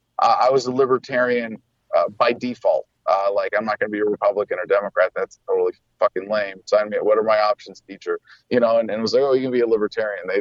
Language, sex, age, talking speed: English, male, 30-49, 260 wpm